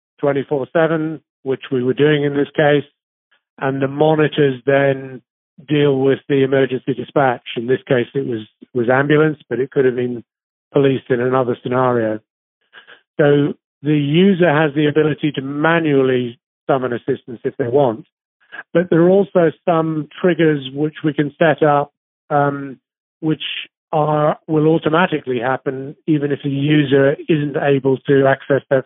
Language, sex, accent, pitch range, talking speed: English, male, British, 130-155 Hz, 155 wpm